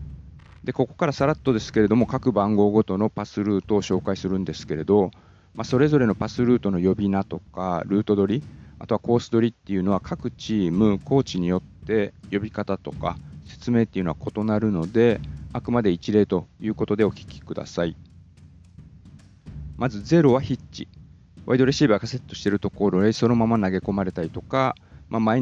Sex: male